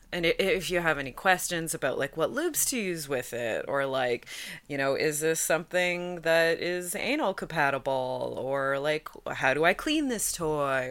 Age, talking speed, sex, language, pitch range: 30-49, 180 wpm, female, English, 140-195 Hz